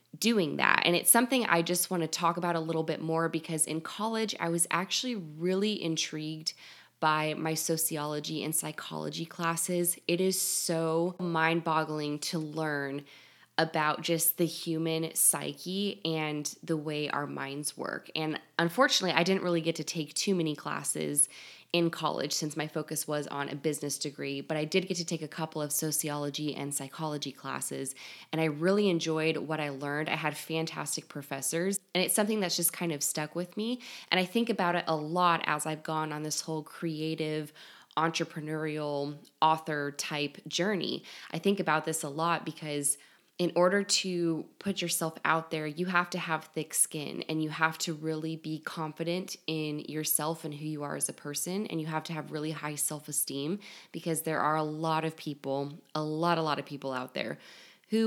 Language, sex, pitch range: English, female, 150-175 Hz